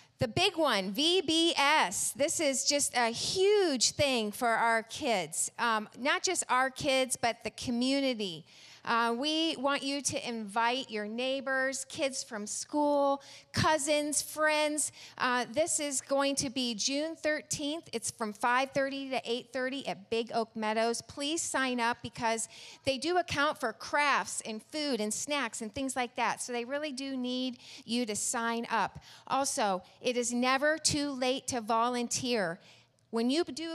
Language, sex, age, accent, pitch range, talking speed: English, female, 40-59, American, 225-280 Hz, 155 wpm